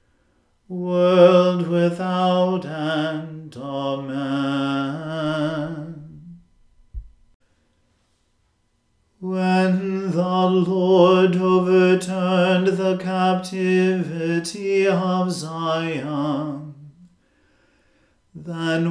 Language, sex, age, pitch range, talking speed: English, male, 40-59, 140-180 Hz, 40 wpm